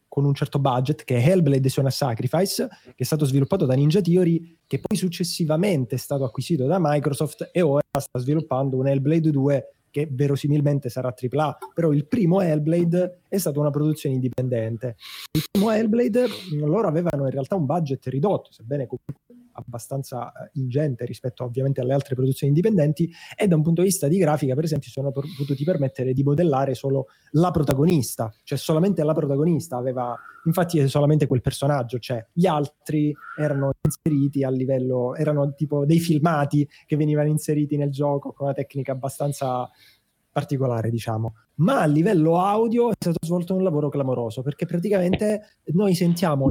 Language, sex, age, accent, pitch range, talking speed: Italian, male, 20-39, native, 135-170 Hz, 165 wpm